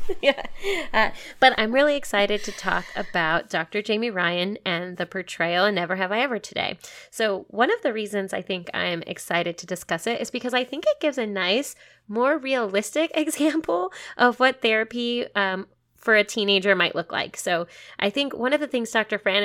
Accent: American